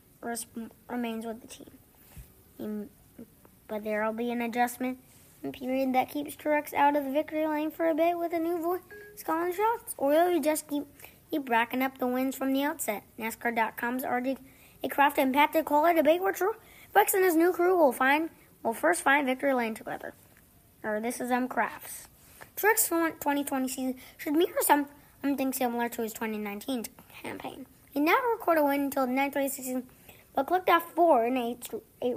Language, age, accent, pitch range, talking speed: English, 20-39, American, 240-300 Hz, 180 wpm